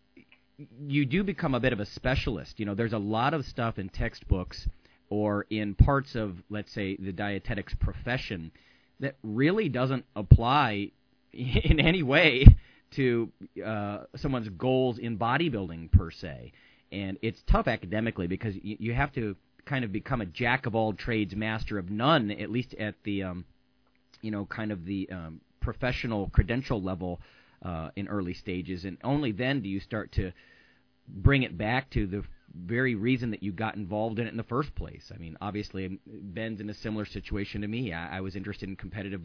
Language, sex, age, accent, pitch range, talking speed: English, male, 30-49, American, 100-125 Hz, 180 wpm